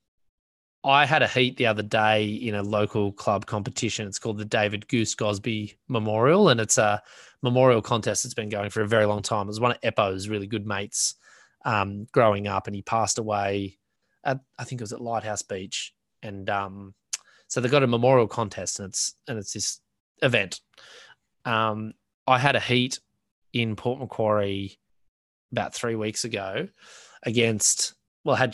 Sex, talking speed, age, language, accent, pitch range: male, 180 wpm, 20-39, English, Australian, 100-120 Hz